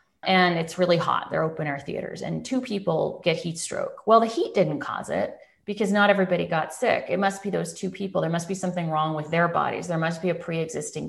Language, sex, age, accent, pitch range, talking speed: English, female, 30-49, American, 150-185 Hz, 240 wpm